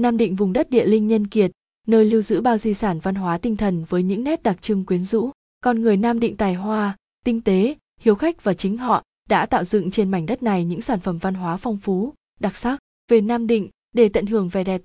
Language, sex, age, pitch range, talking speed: Vietnamese, female, 20-39, 185-225 Hz, 250 wpm